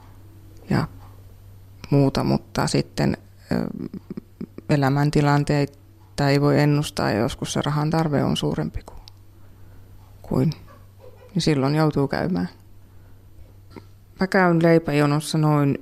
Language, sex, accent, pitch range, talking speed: Finnish, female, native, 95-145 Hz, 85 wpm